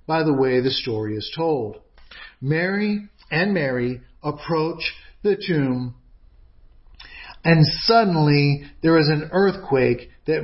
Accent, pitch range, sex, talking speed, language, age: American, 130-180 Hz, male, 115 wpm, English, 50-69